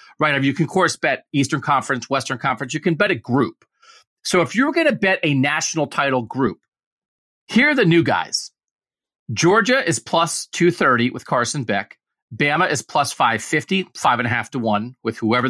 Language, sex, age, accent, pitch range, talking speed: English, male, 40-59, American, 125-170 Hz, 175 wpm